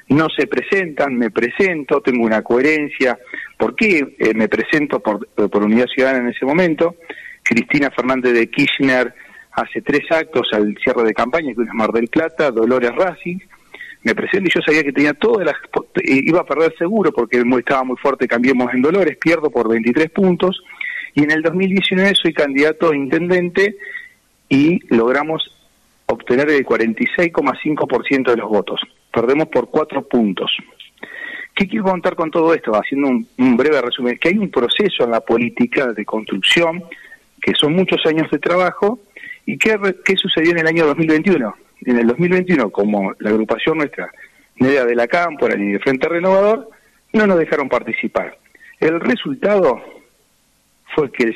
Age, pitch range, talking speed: 40-59, 125-185 Hz, 165 wpm